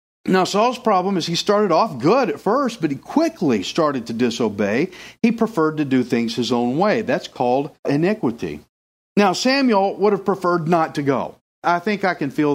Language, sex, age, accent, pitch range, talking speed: English, male, 50-69, American, 160-220 Hz, 190 wpm